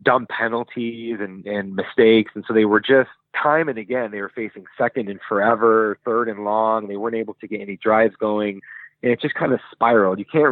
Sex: male